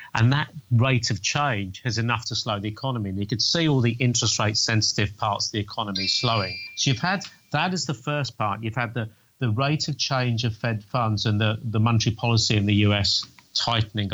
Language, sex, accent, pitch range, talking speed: English, male, British, 105-125 Hz, 220 wpm